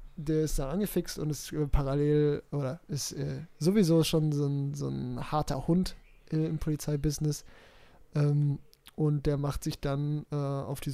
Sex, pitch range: male, 140-155 Hz